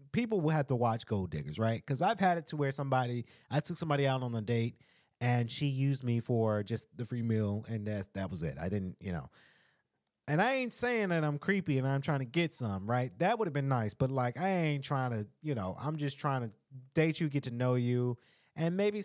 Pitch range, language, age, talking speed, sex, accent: 110-160 Hz, English, 30-49, 250 wpm, male, American